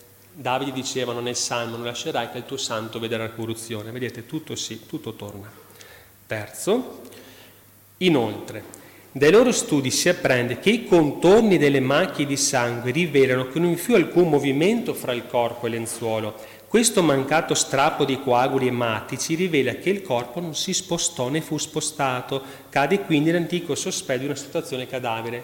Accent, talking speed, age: native, 160 wpm, 30-49